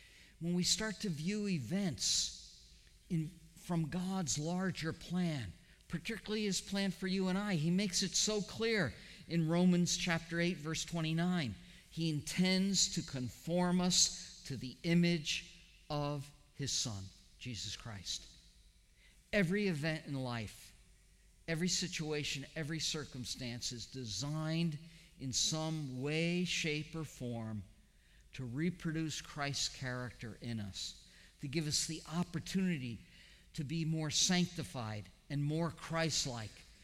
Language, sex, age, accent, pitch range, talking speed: English, male, 50-69, American, 115-170 Hz, 125 wpm